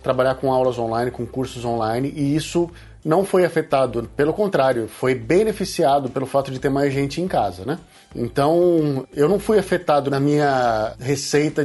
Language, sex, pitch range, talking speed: Portuguese, male, 130-165 Hz, 170 wpm